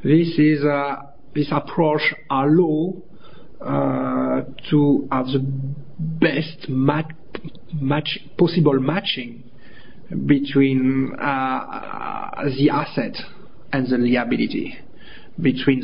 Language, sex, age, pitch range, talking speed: English, male, 50-69, 130-160 Hz, 85 wpm